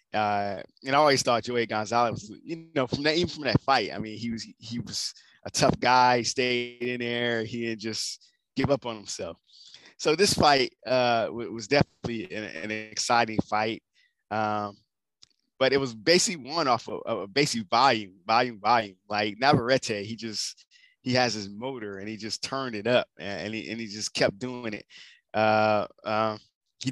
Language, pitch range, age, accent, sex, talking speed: English, 110-135 Hz, 20-39, American, male, 190 wpm